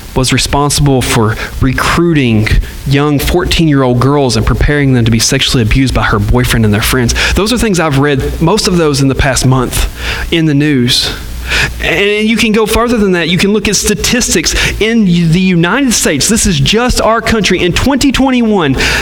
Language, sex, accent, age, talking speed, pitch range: English, male, American, 30-49, 185 wpm, 125-205 Hz